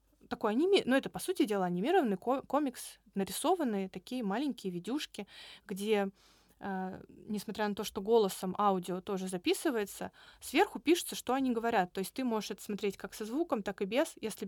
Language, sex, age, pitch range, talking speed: Russian, female, 20-39, 195-230 Hz, 170 wpm